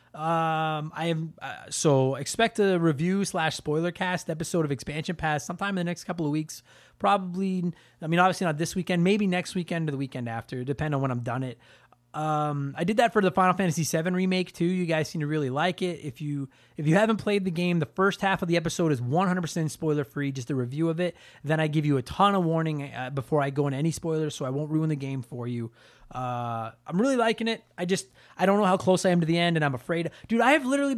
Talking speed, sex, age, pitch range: 250 wpm, male, 20-39, 140-190 Hz